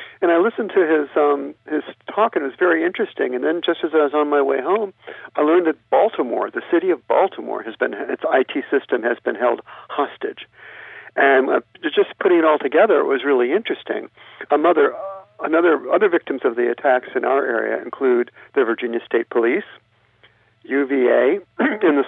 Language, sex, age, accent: English, male, 50-69, American